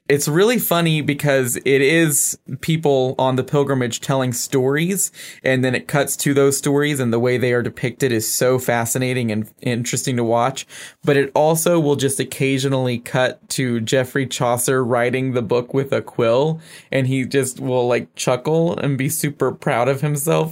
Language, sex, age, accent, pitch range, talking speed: English, male, 20-39, American, 120-140 Hz, 175 wpm